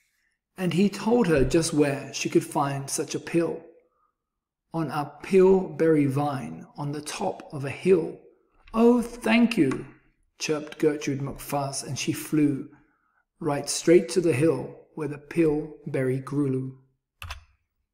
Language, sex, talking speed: English, male, 135 wpm